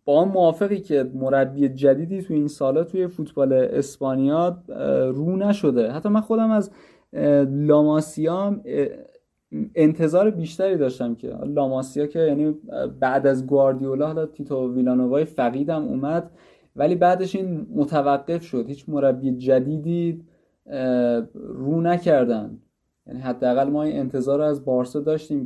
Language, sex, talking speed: Persian, male, 125 wpm